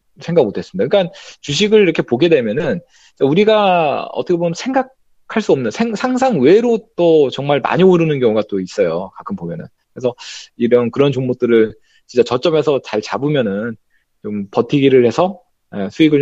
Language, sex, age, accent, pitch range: Korean, male, 20-39, native, 115-170 Hz